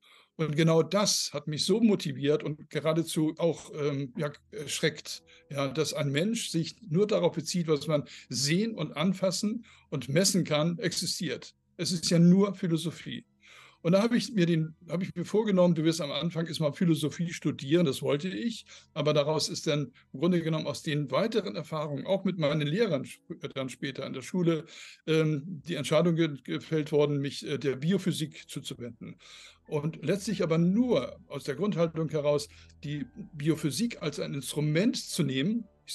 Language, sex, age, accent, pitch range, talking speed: German, male, 60-79, German, 145-175 Hz, 160 wpm